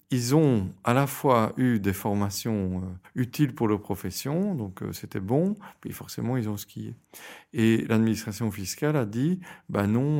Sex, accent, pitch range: male, French, 105-135 Hz